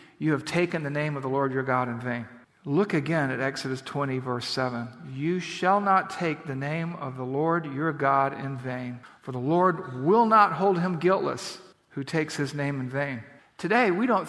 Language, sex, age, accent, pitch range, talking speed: English, male, 50-69, American, 145-185 Hz, 205 wpm